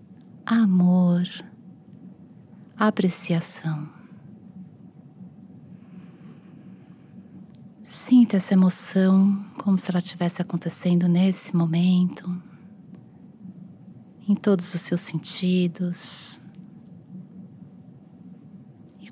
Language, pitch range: Portuguese, 180-200 Hz